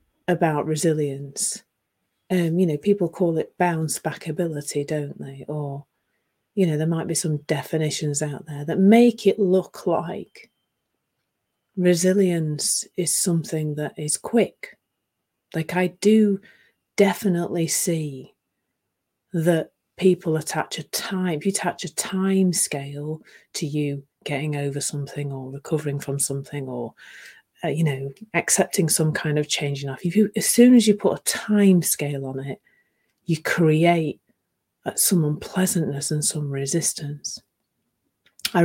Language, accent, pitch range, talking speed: English, British, 145-180 Hz, 140 wpm